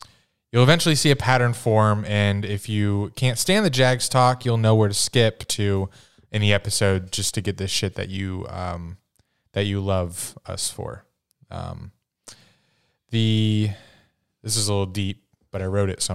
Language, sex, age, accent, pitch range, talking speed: English, male, 20-39, American, 95-110 Hz, 180 wpm